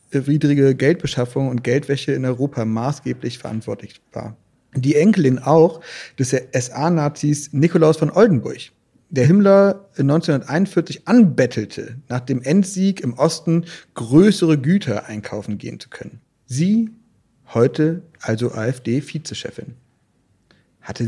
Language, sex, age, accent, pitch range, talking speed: German, male, 40-59, German, 120-160 Hz, 105 wpm